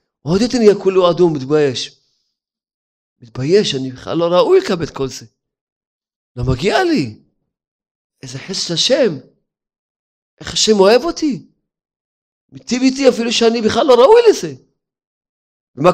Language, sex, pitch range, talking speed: Hebrew, male, 155-200 Hz, 130 wpm